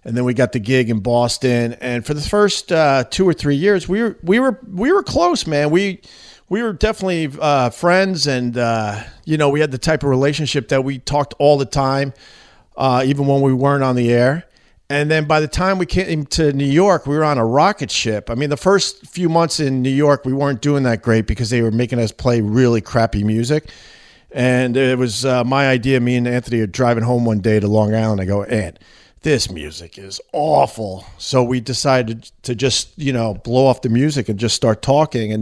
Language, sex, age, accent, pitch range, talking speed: English, male, 50-69, American, 120-155 Hz, 225 wpm